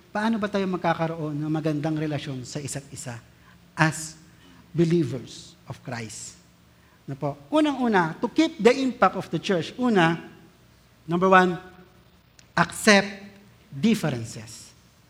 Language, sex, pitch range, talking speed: Filipino, male, 160-235 Hz, 110 wpm